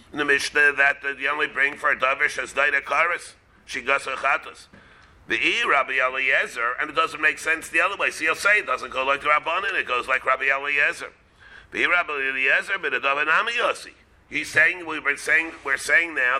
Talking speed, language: 200 wpm, English